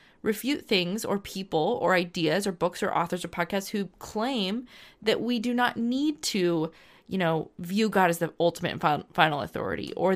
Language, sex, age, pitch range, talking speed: English, female, 20-39, 165-210 Hz, 185 wpm